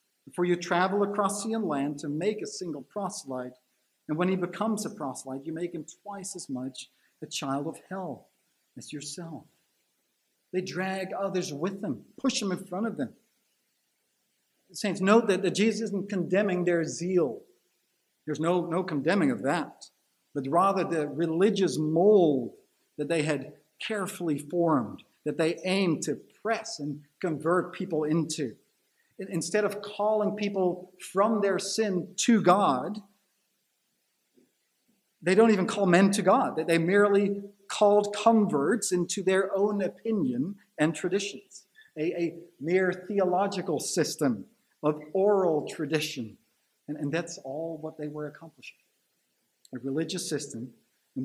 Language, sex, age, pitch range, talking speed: English, male, 50-69, 155-200 Hz, 140 wpm